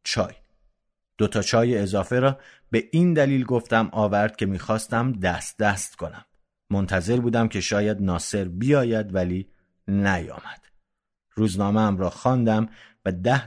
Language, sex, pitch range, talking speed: Persian, male, 90-115 Hz, 125 wpm